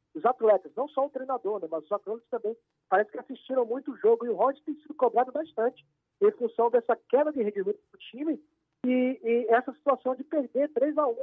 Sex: male